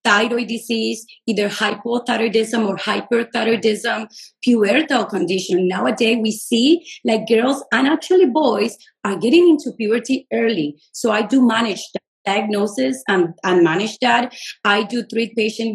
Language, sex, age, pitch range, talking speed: English, female, 30-49, 210-250 Hz, 135 wpm